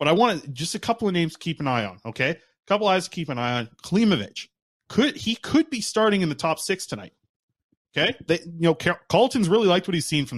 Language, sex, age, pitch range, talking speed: English, male, 20-39, 125-165 Hz, 260 wpm